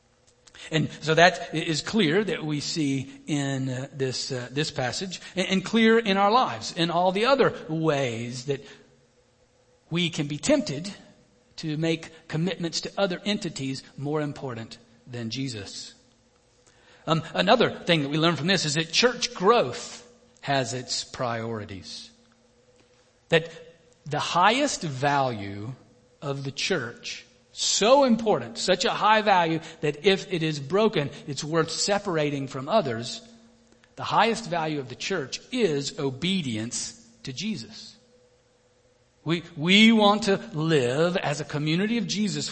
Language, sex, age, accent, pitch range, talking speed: English, male, 50-69, American, 125-185 Hz, 135 wpm